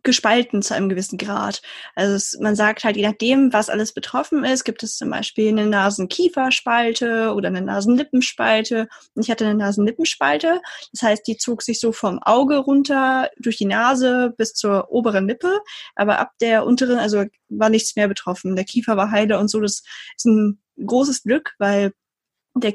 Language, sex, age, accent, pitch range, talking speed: German, female, 20-39, German, 210-245 Hz, 175 wpm